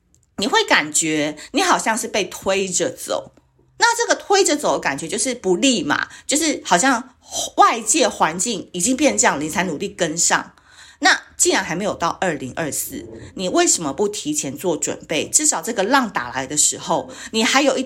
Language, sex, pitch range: Chinese, female, 165-255 Hz